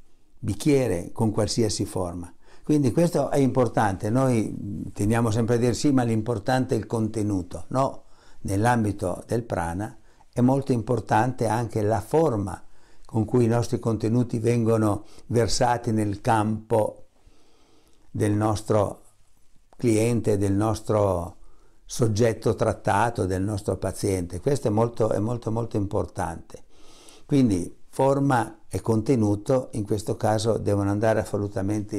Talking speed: 120 wpm